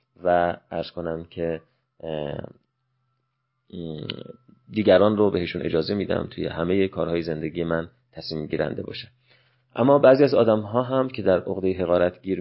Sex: male